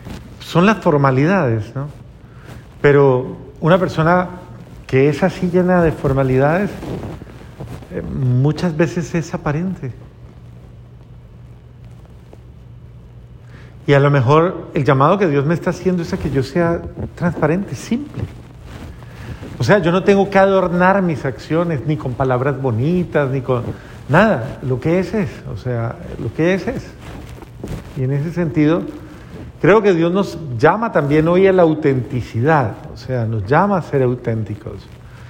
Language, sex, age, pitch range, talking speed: Spanish, male, 50-69, 135-180 Hz, 140 wpm